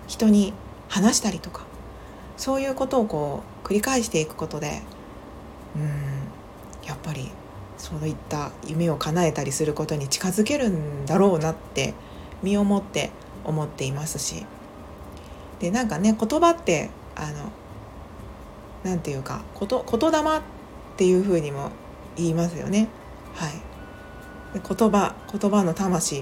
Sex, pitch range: female, 150-230 Hz